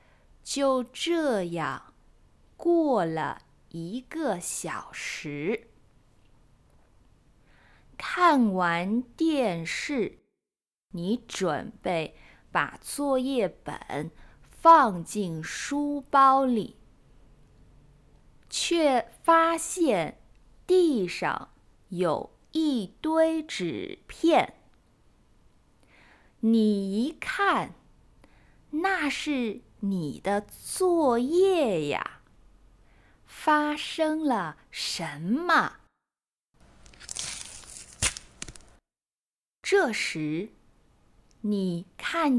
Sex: female